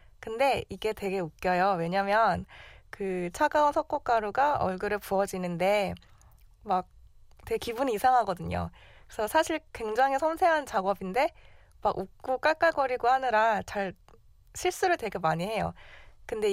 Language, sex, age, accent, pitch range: Korean, female, 20-39, native, 190-280 Hz